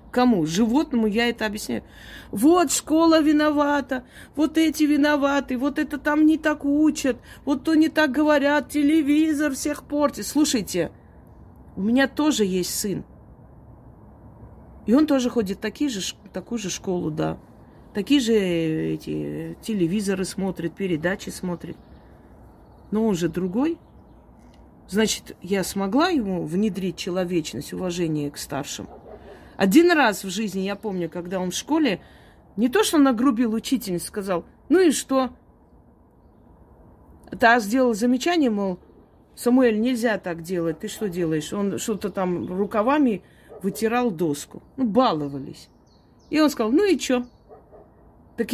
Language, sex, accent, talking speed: Russian, female, native, 130 wpm